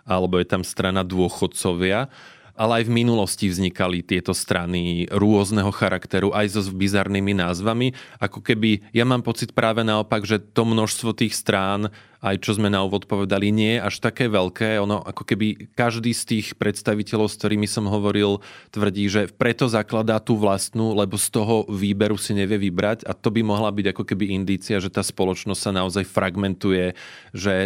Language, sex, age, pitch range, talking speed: Slovak, male, 30-49, 95-110 Hz, 175 wpm